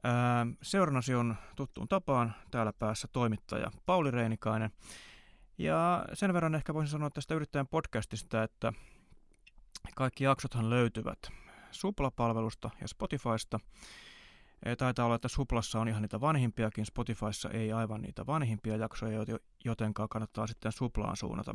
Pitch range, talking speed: 110-135 Hz, 130 wpm